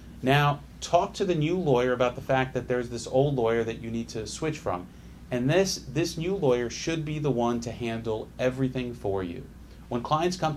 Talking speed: 210 wpm